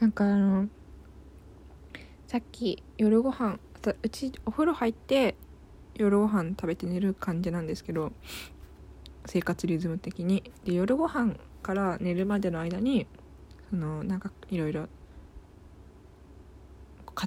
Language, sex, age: Japanese, female, 20-39